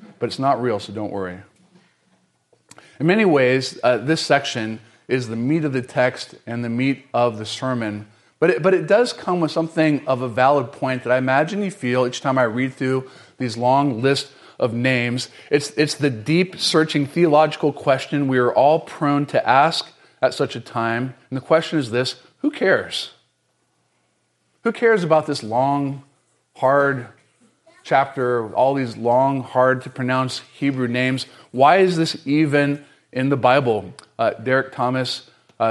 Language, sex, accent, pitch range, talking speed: English, male, American, 120-145 Hz, 165 wpm